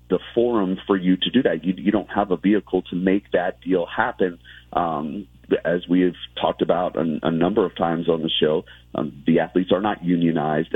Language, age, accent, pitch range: English, 40-59, American, 85-100 Hz